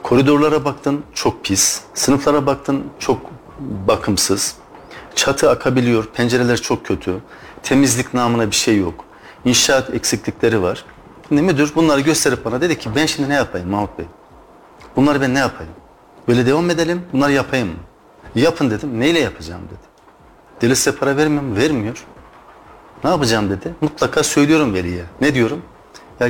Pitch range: 105-145 Hz